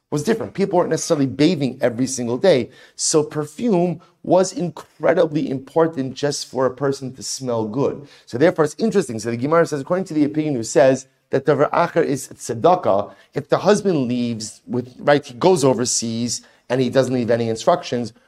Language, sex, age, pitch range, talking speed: English, male, 30-49, 125-155 Hz, 180 wpm